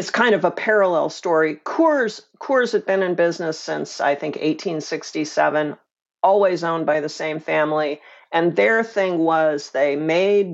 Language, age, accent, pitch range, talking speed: English, 50-69, American, 155-210 Hz, 160 wpm